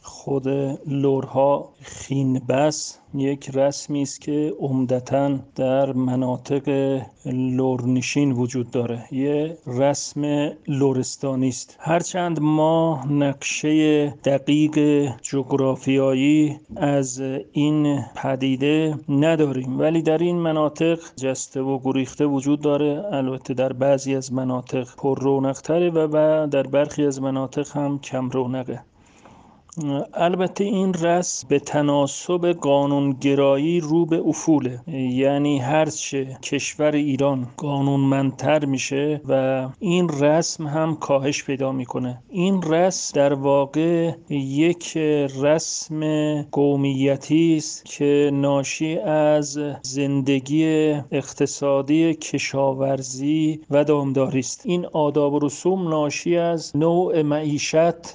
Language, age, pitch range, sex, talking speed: Persian, 40-59, 135-155 Hz, male, 100 wpm